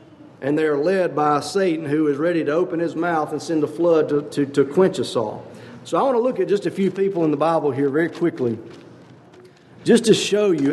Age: 50-69